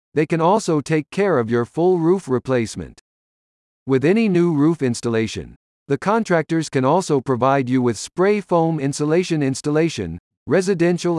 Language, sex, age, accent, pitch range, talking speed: English, male, 50-69, American, 120-175 Hz, 145 wpm